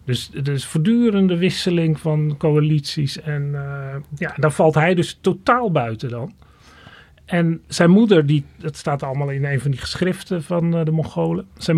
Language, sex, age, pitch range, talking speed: Dutch, male, 40-59, 135-165 Hz, 175 wpm